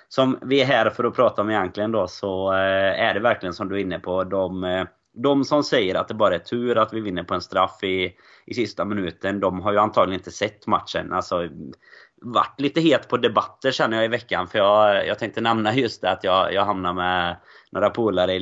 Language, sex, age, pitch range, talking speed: Swedish, male, 20-39, 90-110 Hz, 230 wpm